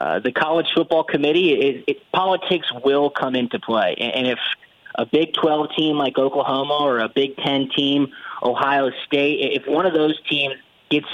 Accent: American